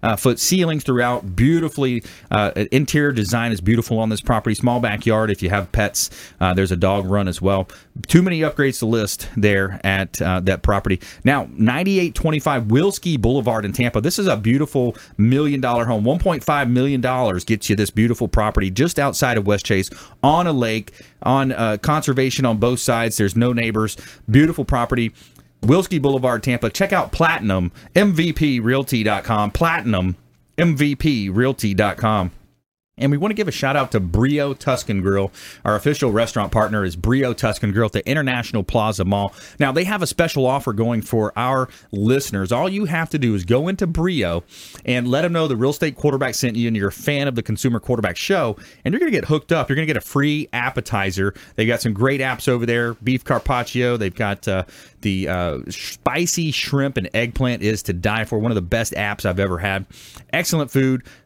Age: 30-49